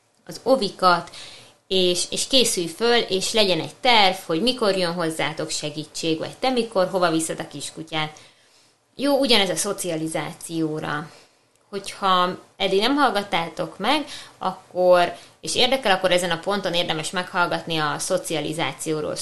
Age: 20-39